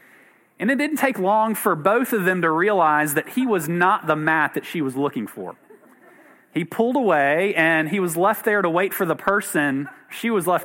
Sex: male